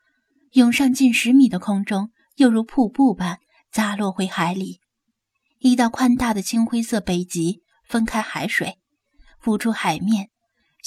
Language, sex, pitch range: Chinese, female, 200-265 Hz